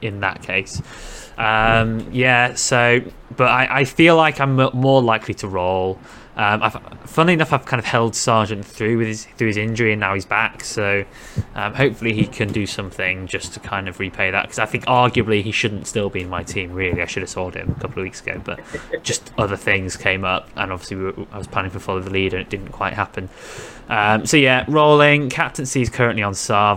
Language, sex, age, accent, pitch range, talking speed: English, male, 20-39, British, 100-125 Hz, 225 wpm